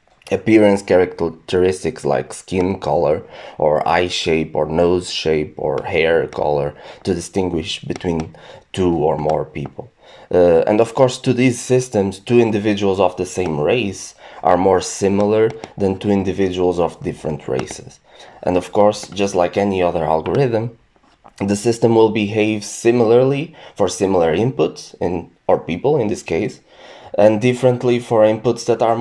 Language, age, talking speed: English, 20-39, 145 wpm